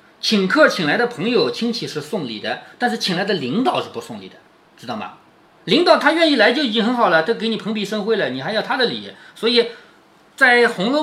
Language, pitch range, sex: Chinese, 185-290 Hz, male